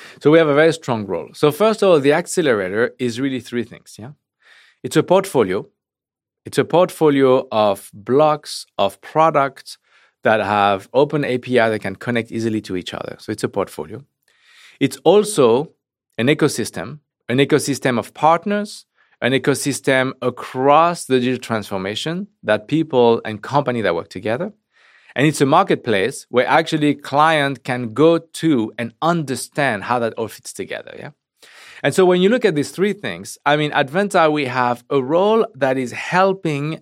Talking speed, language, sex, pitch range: 165 wpm, Hungarian, male, 115-155 Hz